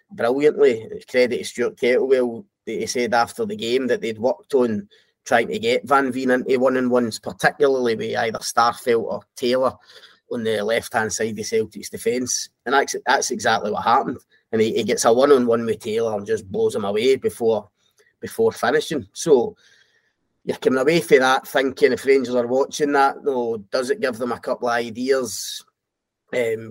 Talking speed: 175 wpm